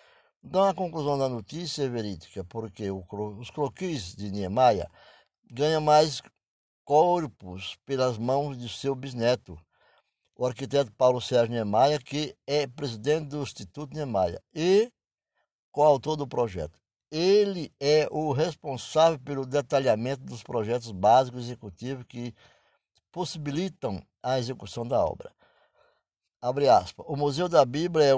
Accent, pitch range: Brazilian, 120-155 Hz